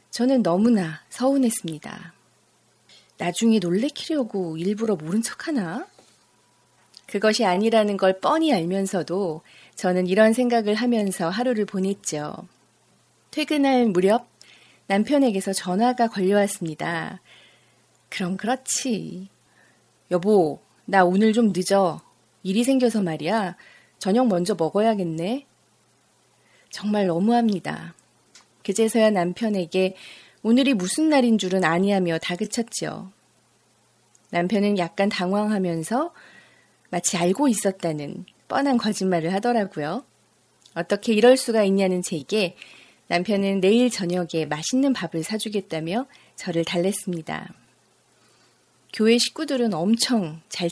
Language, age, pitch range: Korean, 30-49, 180-230 Hz